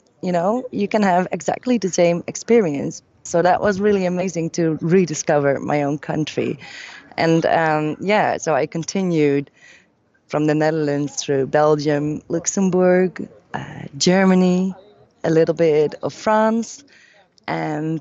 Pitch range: 150-185 Hz